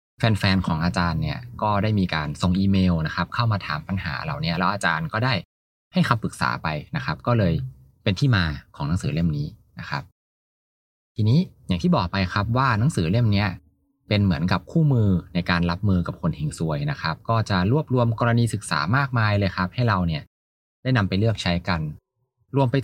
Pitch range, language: 80-115 Hz, Thai